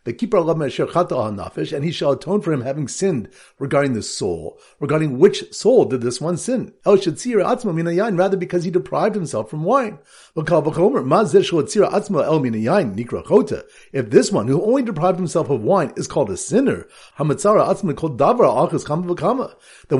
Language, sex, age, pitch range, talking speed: English, male, 50-69, 145-205 Hz, 130 wpm